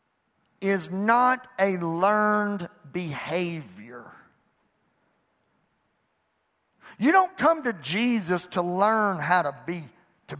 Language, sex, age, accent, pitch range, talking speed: English, male, 50-69, American, 175-225 Hz, 90 wpm